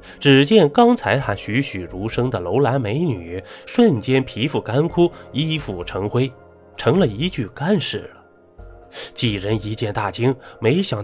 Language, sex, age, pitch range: Chinese, male, 20-39, 105-155 Hz